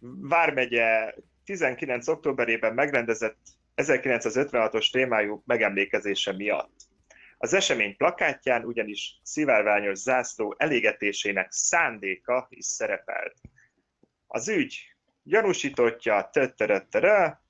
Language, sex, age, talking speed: Hungarian, male, 30-49, 75 wpm